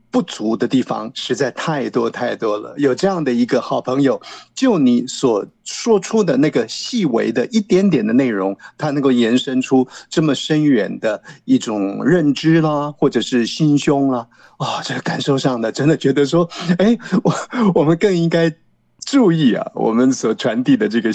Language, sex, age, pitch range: Chinese, male, 50-69, 130-195 Hz